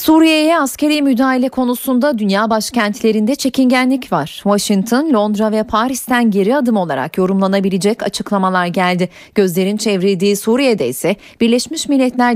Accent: native